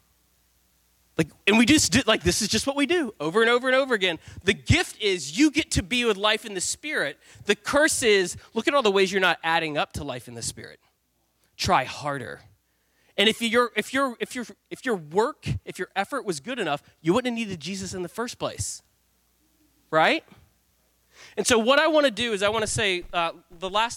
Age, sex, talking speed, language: 20-39, male, 225 wpm, English